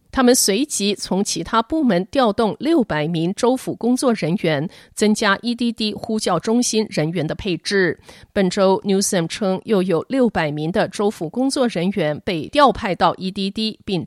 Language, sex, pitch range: Chinese, female, 175-240 Hz